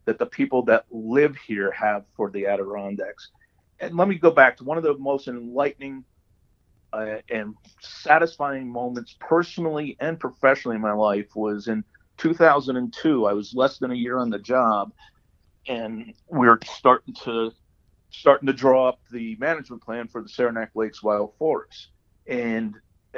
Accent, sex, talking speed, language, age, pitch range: American, male, 160 wpm, English, 50-69, 110-140 Hz